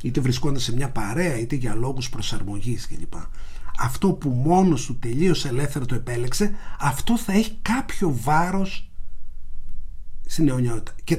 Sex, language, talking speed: male, Greek, 145 wpm